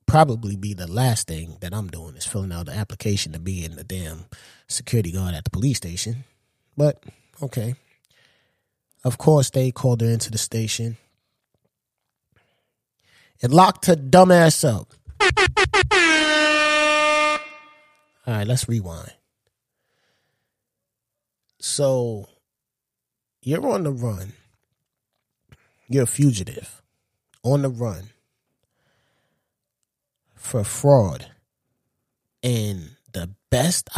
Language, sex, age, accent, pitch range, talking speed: English, male, 20-39, American, 105-135 Hz, 100 wpm